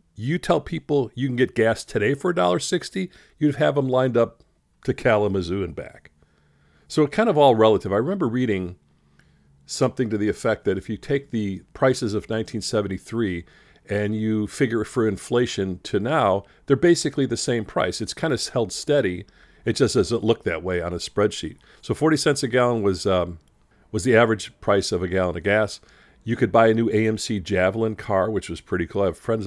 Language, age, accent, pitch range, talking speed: English, 50-69, American, 100-140 Hz, 200 wpm